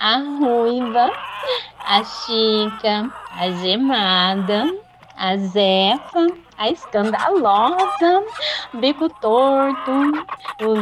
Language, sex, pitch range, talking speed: Portuguese, female, 205-340 Hz, 80 wpm